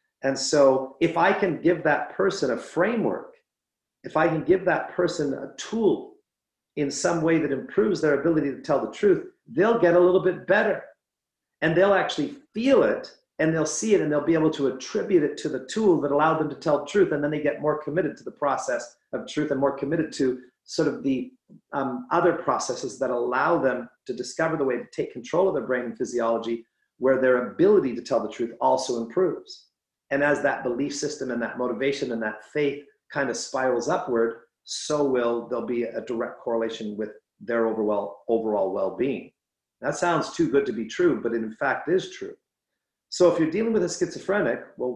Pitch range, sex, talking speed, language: 125-180 Hz, male, 205 wpm, English